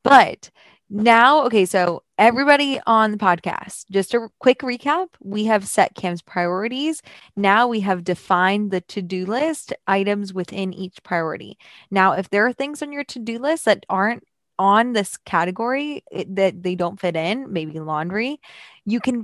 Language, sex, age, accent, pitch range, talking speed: English, female, 20-39, American, 180-240 Hz, 160 wpm